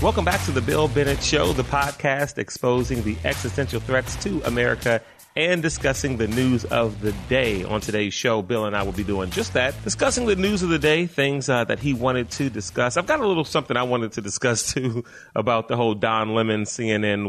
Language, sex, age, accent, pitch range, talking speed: English, male, 30-49, American, 100-135 Hz, 215 wpm